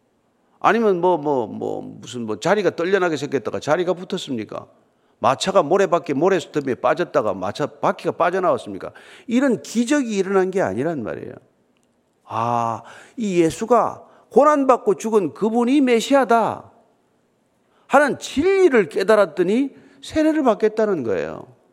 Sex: male